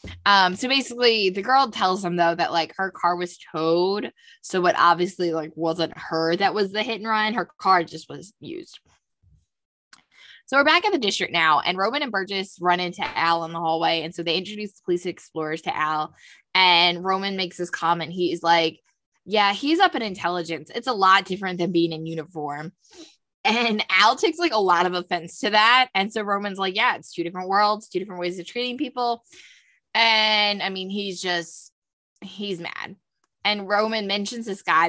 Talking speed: 195 wpm